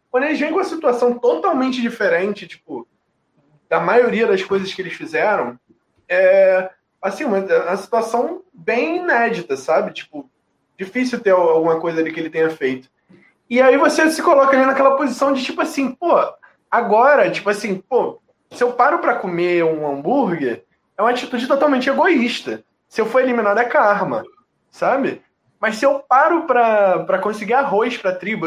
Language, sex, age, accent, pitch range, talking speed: Portuguese, male, 20-39, Brazilian, 195-270 Hz, 165 wpm